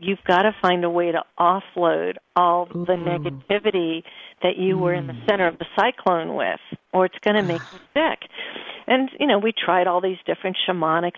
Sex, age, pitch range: female, 50-69, 170-195 Hz